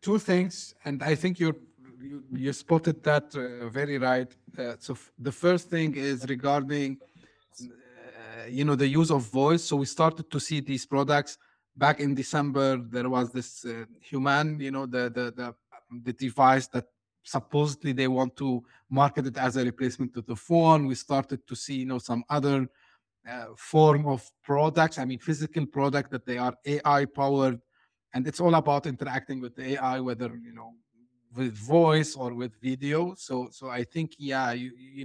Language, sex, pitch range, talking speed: English, male, 125-145 Hz, 185 wpm